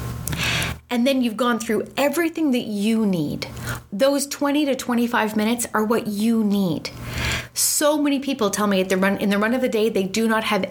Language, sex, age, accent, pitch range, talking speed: English, female, 30-49, American, 190-250 Hz, 200 wpm